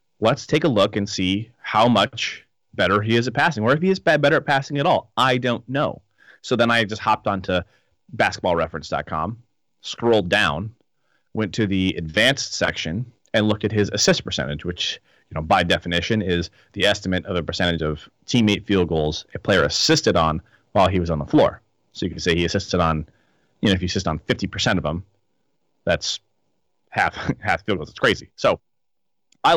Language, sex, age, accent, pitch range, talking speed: English, male, 30-49, American, 90-120 Hz, 195 wpm